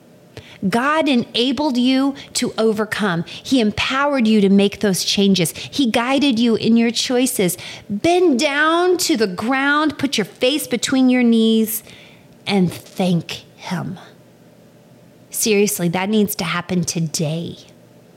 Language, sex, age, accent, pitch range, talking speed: English, female, 30-49, American, 190-250 Hz, 125 wpm